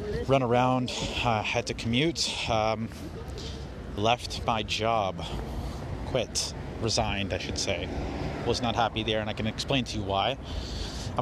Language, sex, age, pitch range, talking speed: English, male, 30-49, 90-110 Hz, 145 wpm